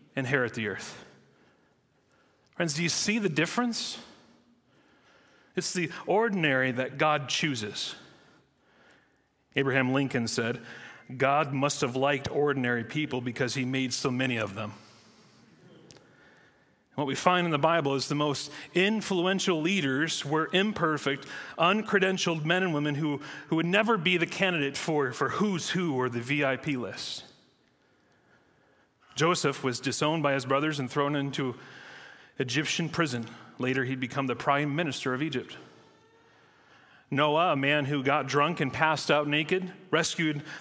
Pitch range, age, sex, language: 135-180 Hz, 40-59, male, English